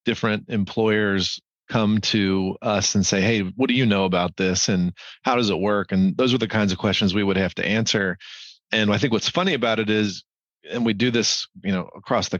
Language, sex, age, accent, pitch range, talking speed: English, male, 40-59, American, 95-115 Hz, 225 wpm